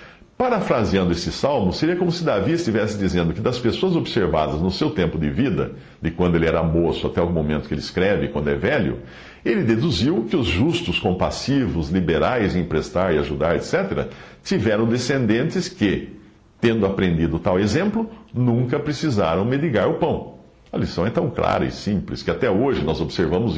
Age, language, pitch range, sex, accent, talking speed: 60-79, Portuguese, 80-120 Hz, male, Brazilian, 175 wpm